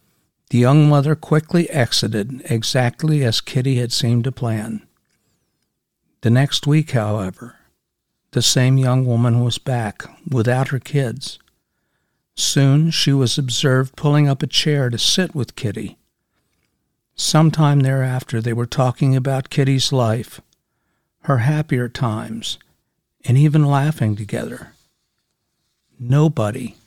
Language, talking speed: English, 120 wpm